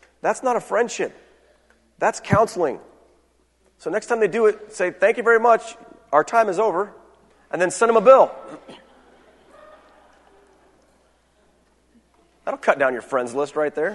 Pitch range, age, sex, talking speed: 130-195 Hz, 30-49, male, 150 wpm